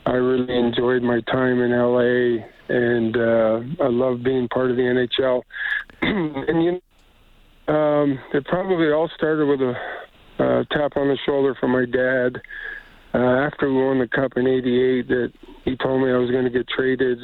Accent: American